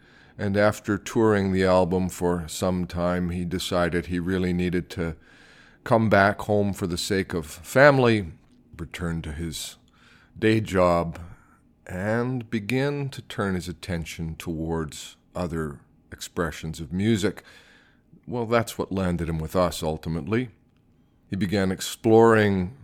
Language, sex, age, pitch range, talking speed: English, male, 40-59, 85-105 Hz, 130 wpm